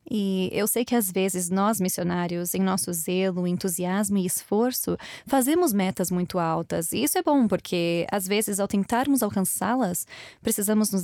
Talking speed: 165 wpm